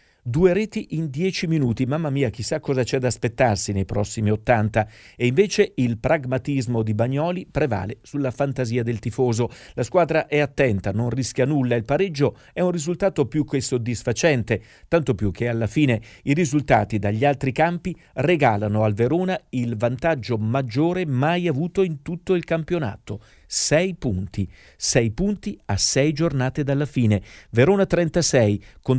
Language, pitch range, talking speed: Italian, 115-155 Hz, 155 wpm